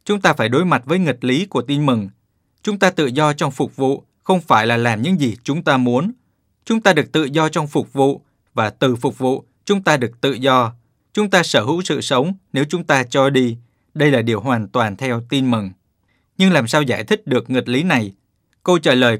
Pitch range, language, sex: 120-155 Hz, Vietnamese, male